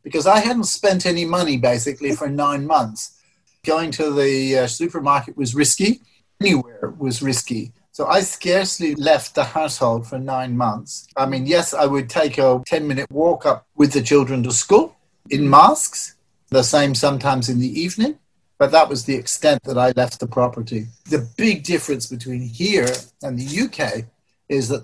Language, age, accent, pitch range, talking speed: English, 50-69, British, 130-160 Hz, 175 wpm